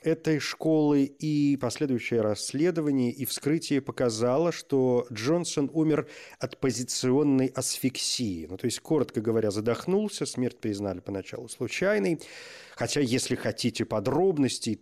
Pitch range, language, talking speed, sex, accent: 115-155 Hz, Russian, 115 wpm, male, native